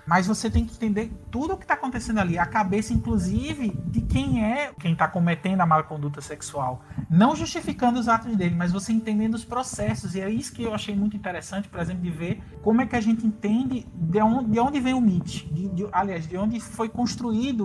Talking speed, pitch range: 210 wpm, 180-230 Hz